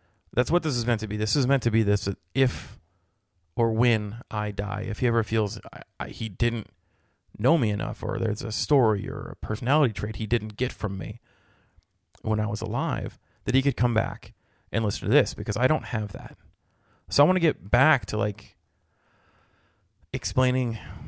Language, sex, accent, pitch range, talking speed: English, male, American, 105-120 Hz, 190 wpm